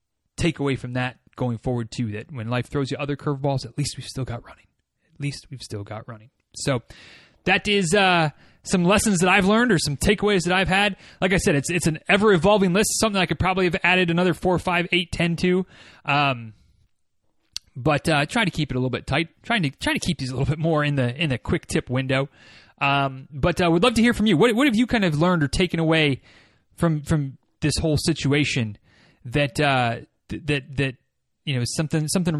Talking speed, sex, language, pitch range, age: 225 wpm, male, English, 135-190 Hz, 20-39